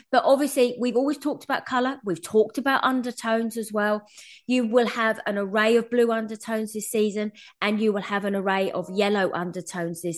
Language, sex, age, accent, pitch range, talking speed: English, female, 20-39, British, 185-240 Hz, 195 wpm